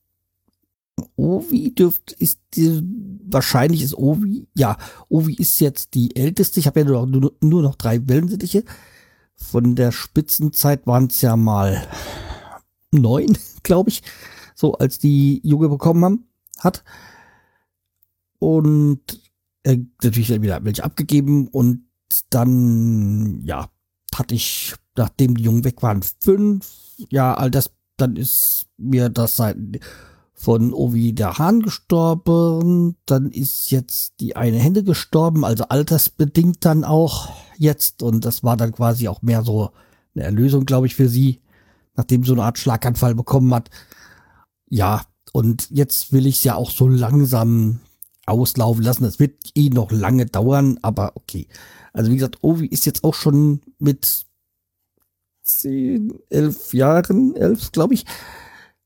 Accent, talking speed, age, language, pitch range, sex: German, 140 wpm, 50-69, German, 115-150 Hz, male